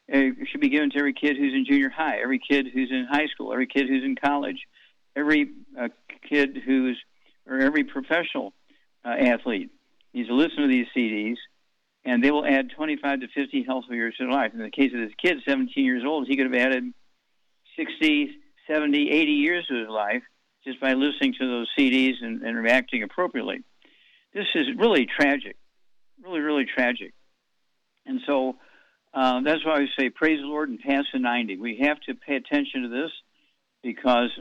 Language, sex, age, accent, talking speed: English, male, 50-69, American, 190 wpm